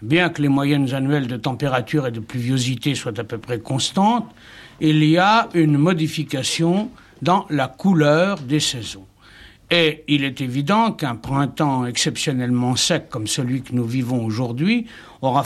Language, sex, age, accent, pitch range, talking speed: French, male, 60-79, French, 130-165 Hz, 155 wpm